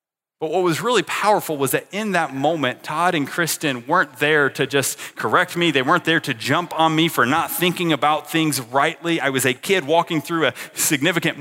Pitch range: 150-205 Hz